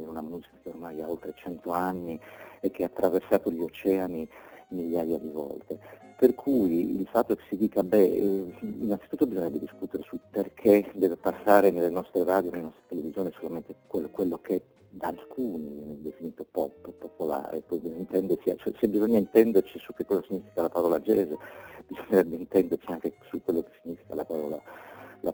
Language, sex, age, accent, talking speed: Italian, male, 50-69, native, 160 wpm